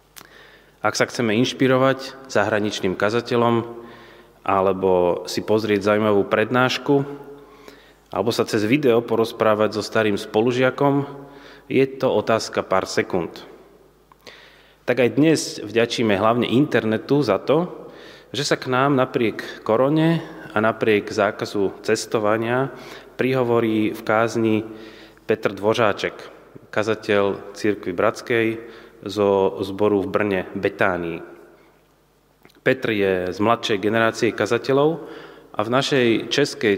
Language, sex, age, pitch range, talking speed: Slovak, male, 30-49, 105-135 Hz, 105 wpm